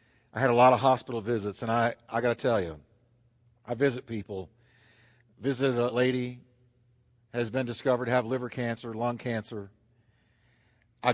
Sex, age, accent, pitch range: male, 50-69, American, 115-175 Hz